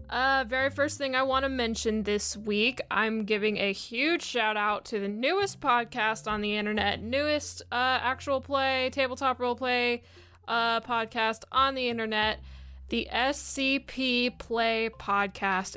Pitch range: 215-270 Hz